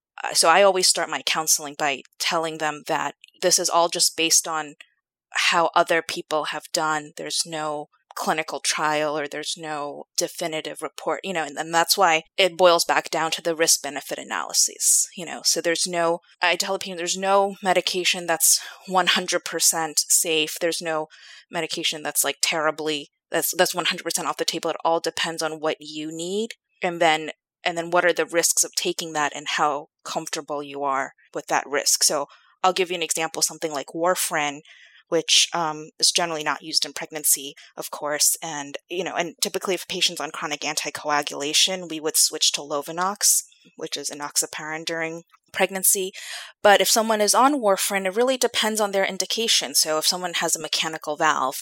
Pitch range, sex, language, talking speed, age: 155-180 Hz, female, English, 180 wpm, 20-39